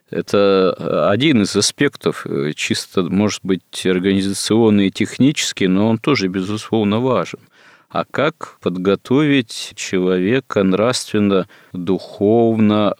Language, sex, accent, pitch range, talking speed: Russian, male, native, 95-110 Hz, 90 wpm